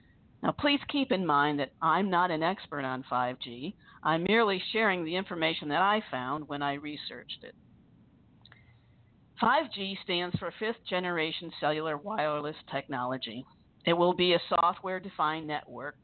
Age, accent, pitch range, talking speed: 50-69, American, 145-190 Hz, 140 wpm